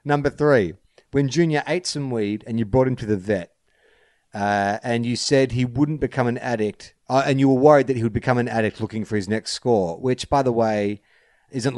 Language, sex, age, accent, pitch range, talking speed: English, male, 40-59, Australian, 100-125 Hz, 225 wpm